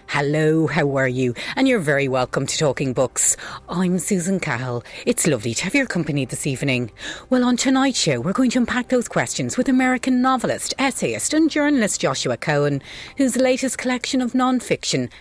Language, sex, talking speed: English, female, 180 wpm